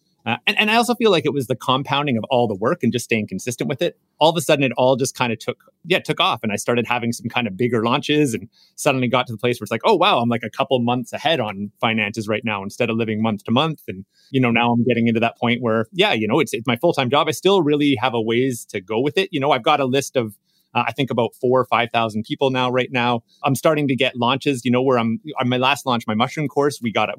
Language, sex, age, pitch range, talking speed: English, male, 30-49, 120-150 Hz, 300 wpm